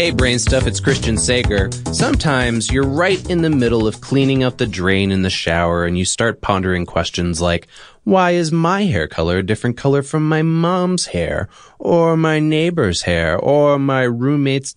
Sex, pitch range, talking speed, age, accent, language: male, 100-145 Hz, 185 wpm, 20-39, American, English